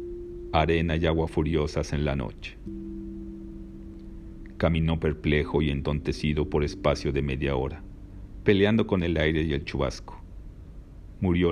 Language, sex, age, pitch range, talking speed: Spanish, male, 40-59, 75-90 Hz, 125 wpm